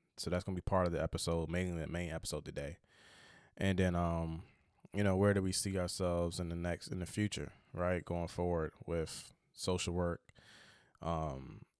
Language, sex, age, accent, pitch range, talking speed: English, male, 20-39, American, 85-100 Hz, 190 wpm